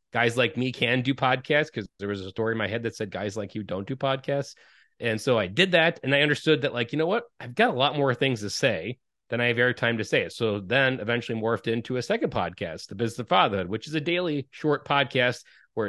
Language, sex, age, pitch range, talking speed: English, male, 30-49, 115-150 Hz, 265 wpm